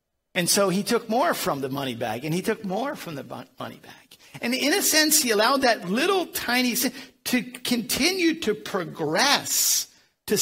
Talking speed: 185 wpm